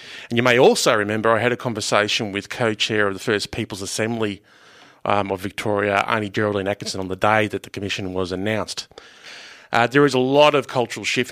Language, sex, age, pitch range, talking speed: English, male, 30-49, 100-115 Hz, 200 wpm